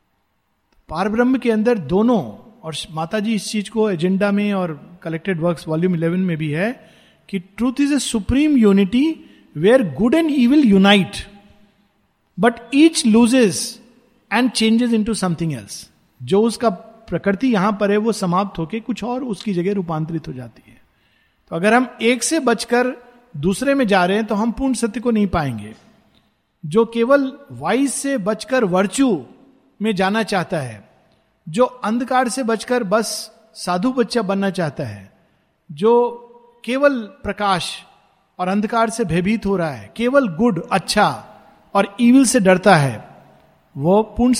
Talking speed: 155 wpm